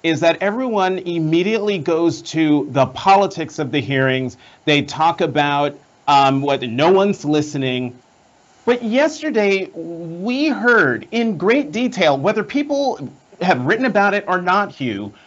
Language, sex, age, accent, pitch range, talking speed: English, male, 40-59, American, 185-280 Hz, 140 wpm